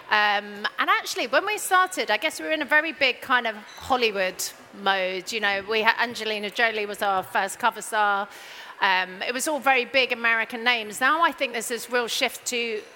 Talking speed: 210 wpm